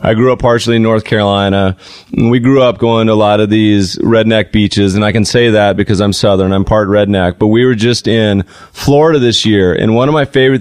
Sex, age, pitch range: male, 30-49, 105-125 Hz